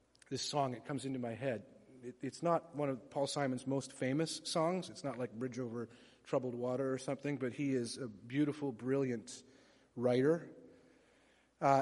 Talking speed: 175 wpm